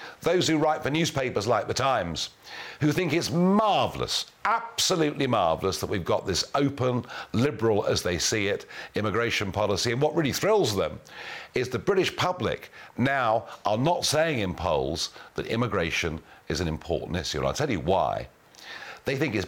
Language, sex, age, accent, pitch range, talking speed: English, male, 50-69, British, 110-160 Hz, 170 wpm